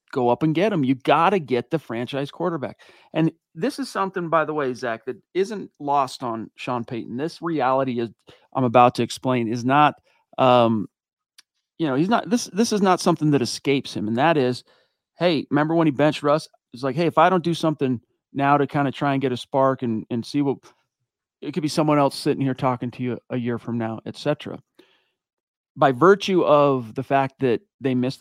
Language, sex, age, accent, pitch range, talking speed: English, male, 40-59, American, 125-155 Hz, 215 wpm